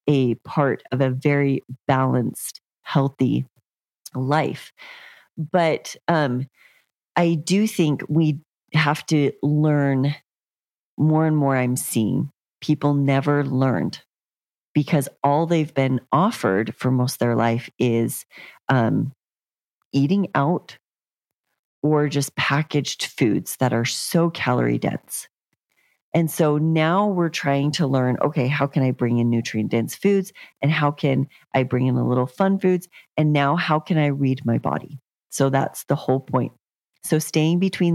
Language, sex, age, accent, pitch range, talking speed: English, female, 40-59, American, 130-165 Hz, 140 wpm